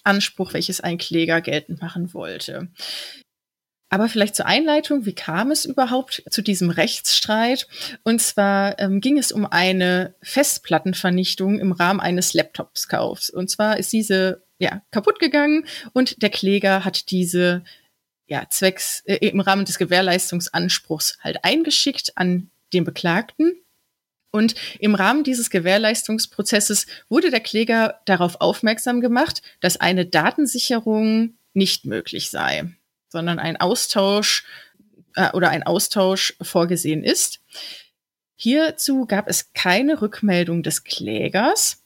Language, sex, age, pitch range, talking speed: German, female, 30-49, 180-240 Hz, 125 wpm